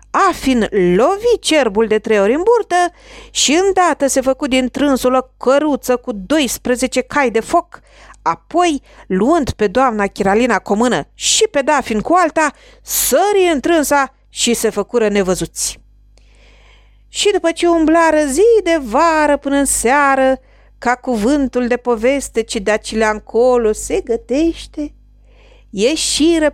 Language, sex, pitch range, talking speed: Romanian, female, 215-330 Hz, 135 wpm